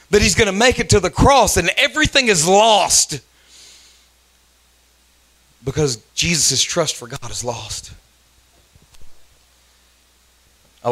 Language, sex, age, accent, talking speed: English, male, 40-59, American, 110 wpm